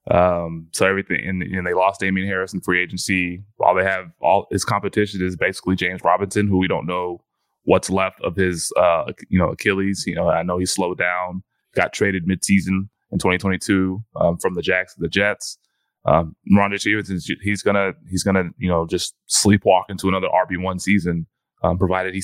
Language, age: English, 20-39